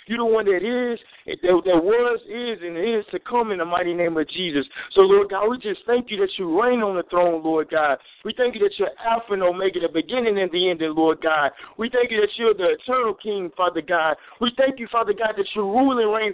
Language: English